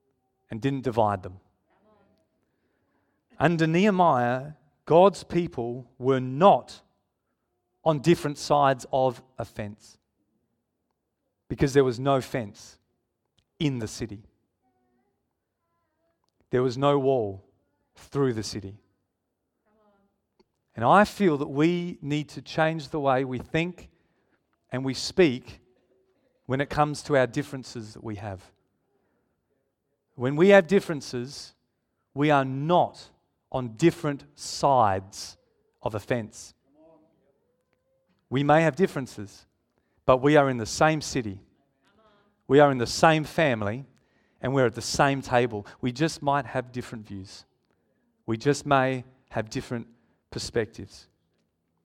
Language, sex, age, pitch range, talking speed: English, male, 40-59, 115-150 Hz, 120 wpm